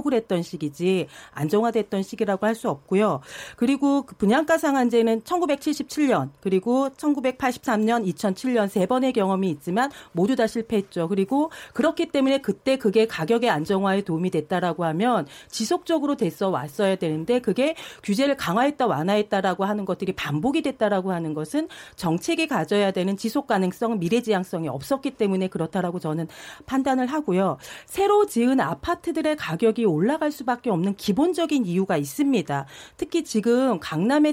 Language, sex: Korean, female